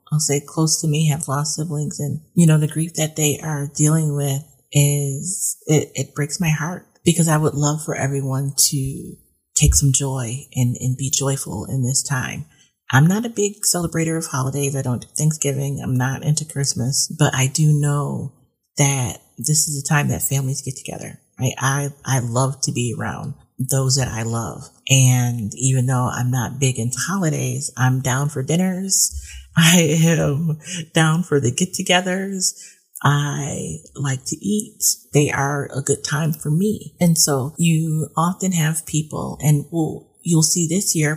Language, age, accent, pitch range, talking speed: English, 30-49, American, 135-160 Hz, 175 wpm